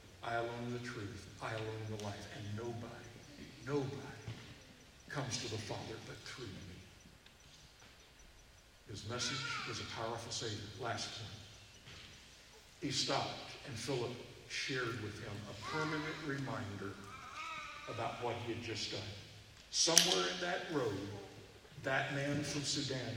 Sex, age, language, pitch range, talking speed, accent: male, 60-79, English, 110-140 Hz, 130 wpm, American